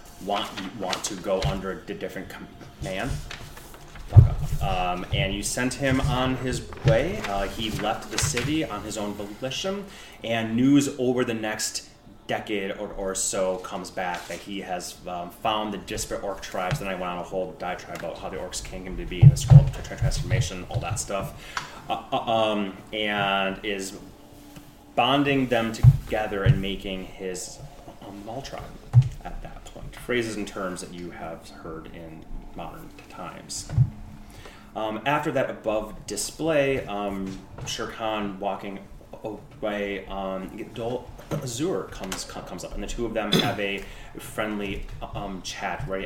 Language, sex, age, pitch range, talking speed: English, male, 30-49, 95-125 Hz, 155 wpm